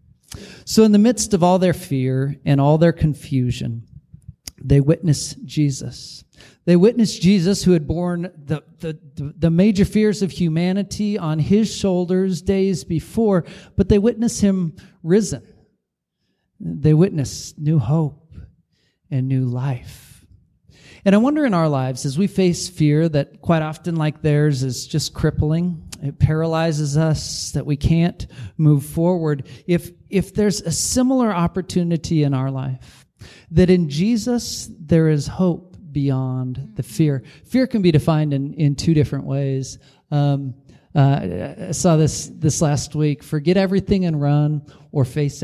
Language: English